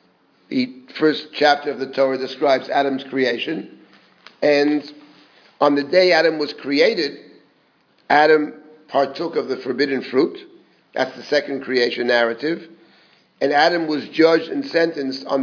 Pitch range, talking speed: 130-165 Hz, 130 wpm